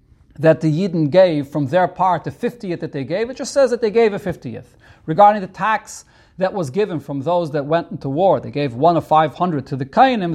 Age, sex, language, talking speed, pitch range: 40-59, male, English, 230 wpm, 150-205 Hz